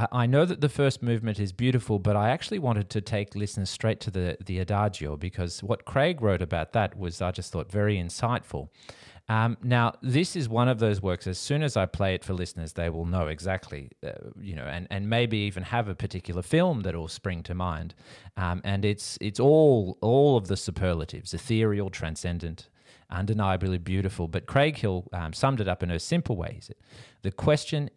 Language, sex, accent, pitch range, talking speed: English, male, Australian, 90-120 Hz, 205 wpm